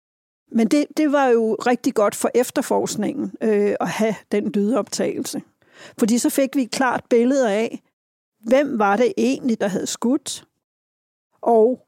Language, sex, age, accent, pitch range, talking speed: Danish, female, 40-59, native, 210-245 Hz, 150 wpm